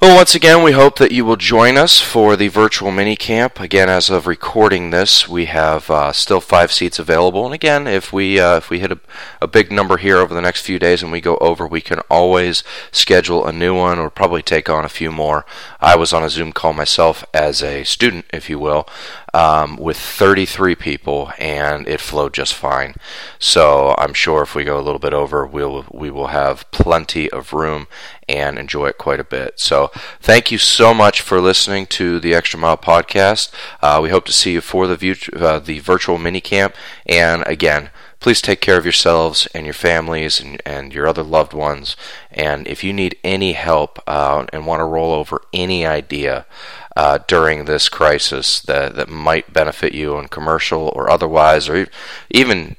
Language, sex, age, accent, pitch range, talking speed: English, male, 30-49, American, 75-90 Hz, 205 wpm